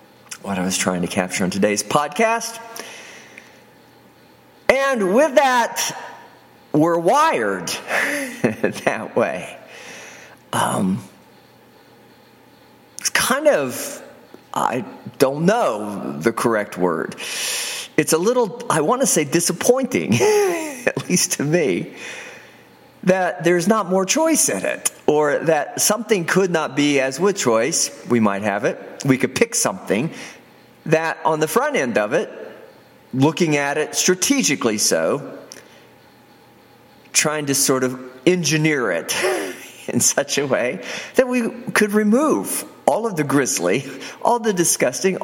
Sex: male